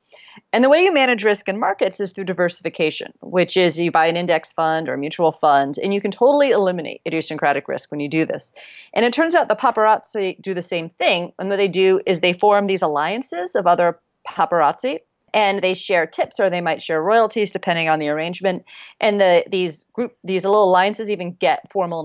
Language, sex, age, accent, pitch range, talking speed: English, female, 30-49, American, 170-215 Hz, 210 wpm